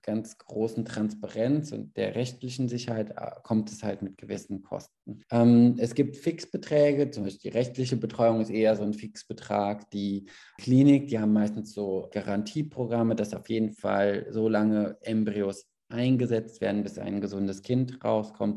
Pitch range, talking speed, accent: 105-130 Hz, 155 wpm, German